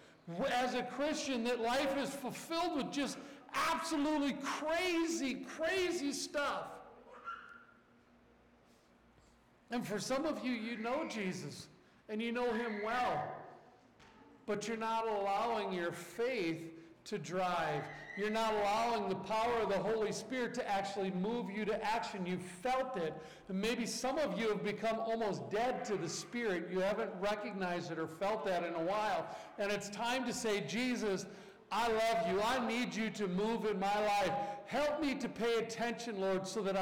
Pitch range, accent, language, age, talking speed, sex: 210-285 Hz, American, English, 50-69, 160 wpm, male